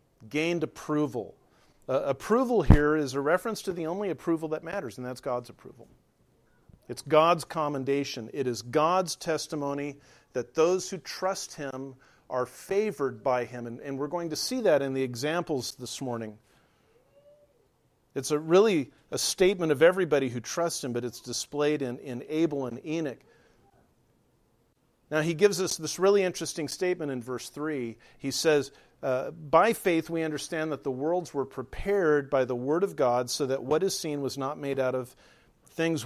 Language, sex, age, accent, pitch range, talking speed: English, male, 50-69, American, 130-165 Hz, 170 wpm